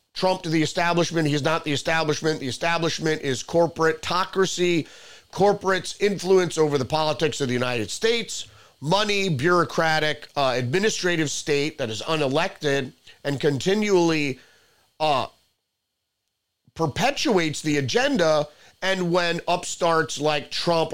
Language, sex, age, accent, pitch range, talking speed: English, male, 30-49, American, 140-175 Hz, 115 wpm